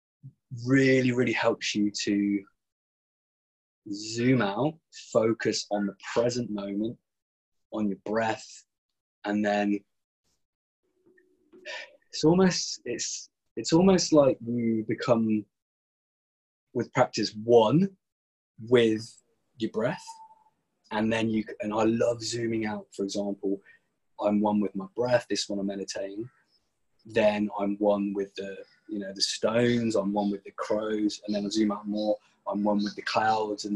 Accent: British